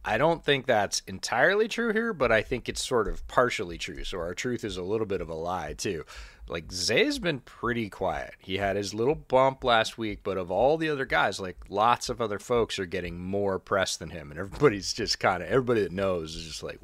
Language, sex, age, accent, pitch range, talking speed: English, male, 30-49, American, 90-120 Hz, 240 wpm